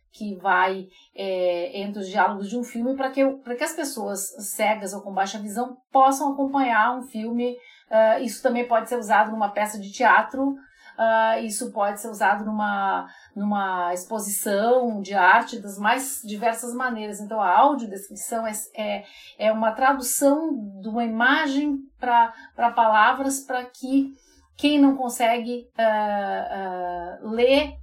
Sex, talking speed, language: female, 145 wpm, Portuguese